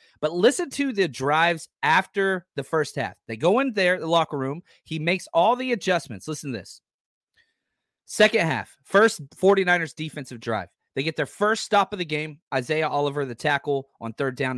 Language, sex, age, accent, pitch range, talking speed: English, male, 30-49, American, 140-215 Hz, 185 wpm